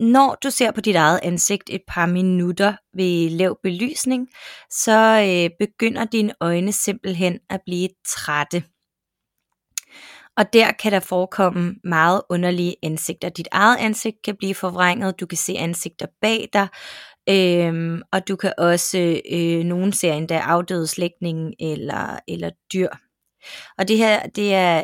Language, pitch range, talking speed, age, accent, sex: Danish, 175-200 Hz, 140 wpm, 20-39, native, female